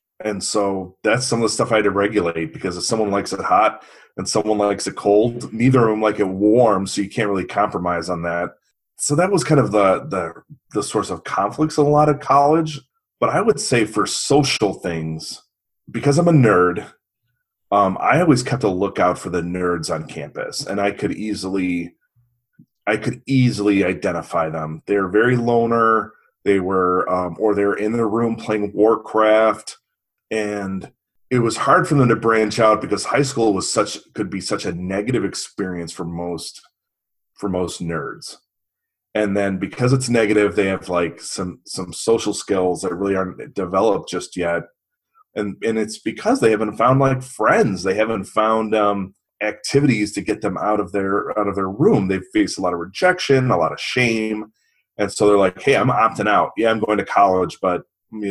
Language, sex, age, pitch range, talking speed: English, male, 30-49, 95-115 Hz, 190 wpm